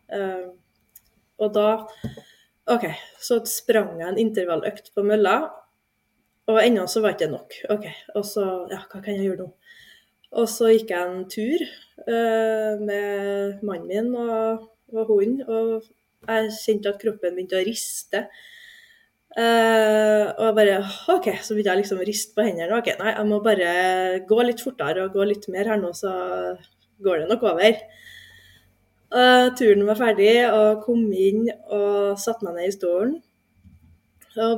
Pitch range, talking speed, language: 195-225 Hz, 165 wpm, English